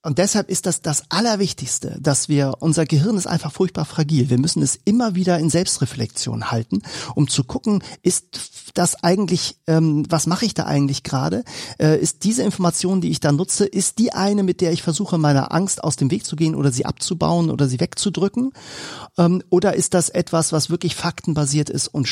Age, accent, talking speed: 40-59, German, 190 wpm